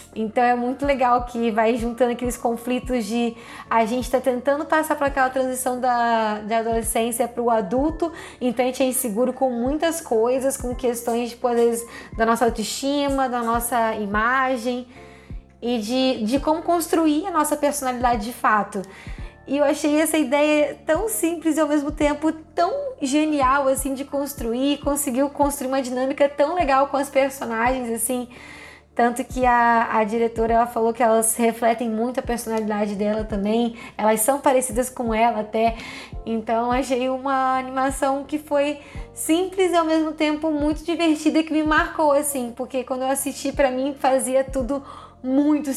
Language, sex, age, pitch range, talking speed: Portuguese, female, 10-29, 235-280 Hz, 165 wpm